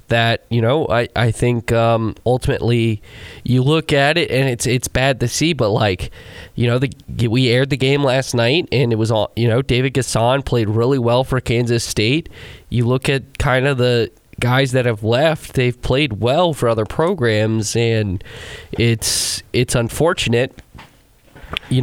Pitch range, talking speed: 115-130 Hz, 175 wpm